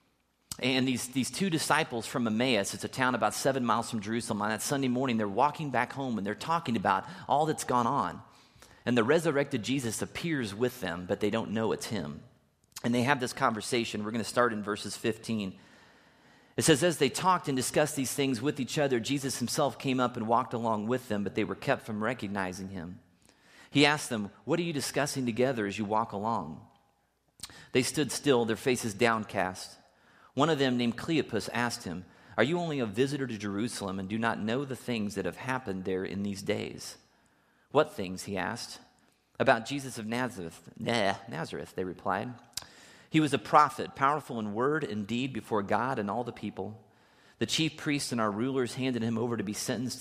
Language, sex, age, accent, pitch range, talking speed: English, male, 40-59, American, 105-135 Hz, 200 wpm